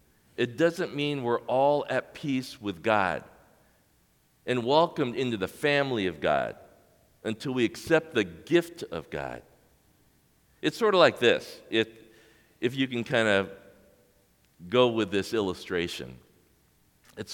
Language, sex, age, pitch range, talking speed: English, male, 50-69, 90-130 Hz, 135 wpm